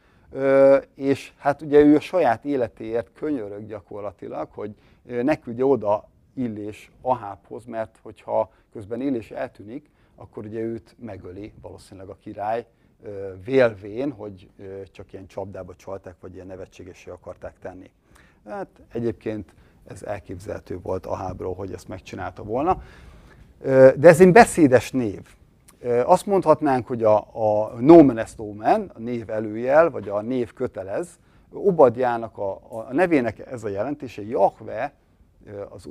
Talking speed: 130 wpm